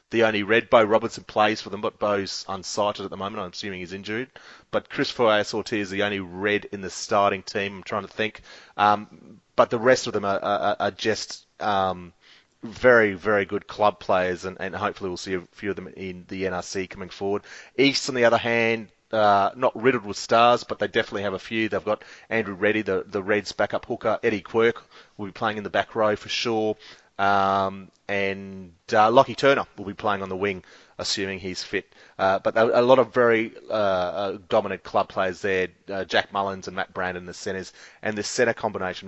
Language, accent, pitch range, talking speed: English, Australian, 95-110 Hz, 210 wpm